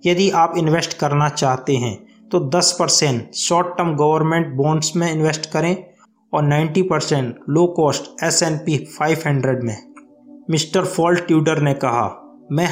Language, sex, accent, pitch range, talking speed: Hindi, male, native, 145-175 Hz, 140 wpm